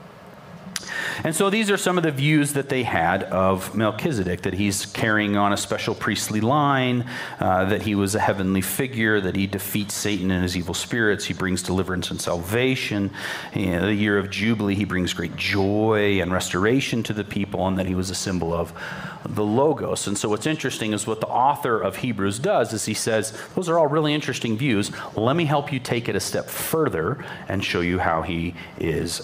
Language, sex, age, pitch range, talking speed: English, male, 40-59, 95-130 Hz, 205 wpm